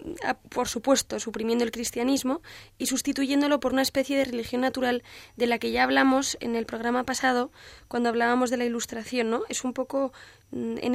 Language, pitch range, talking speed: Spanish, 235-265 Hz, 185 wpm